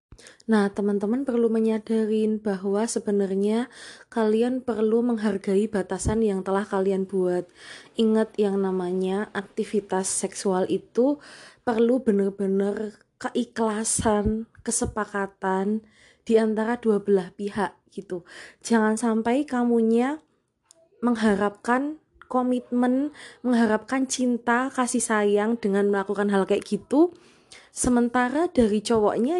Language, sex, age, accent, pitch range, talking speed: Indonesian, female, 20-39, native, 205-245 Hz, 95 wpm